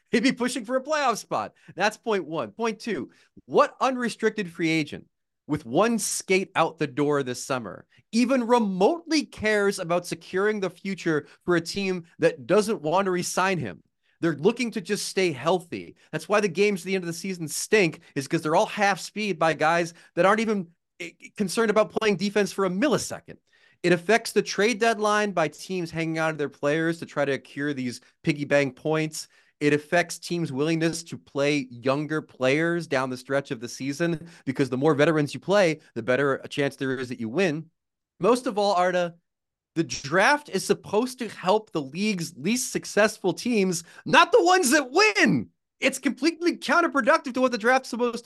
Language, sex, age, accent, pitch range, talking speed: English, male, 30-49, American, 155-220 Hz, 190 wpm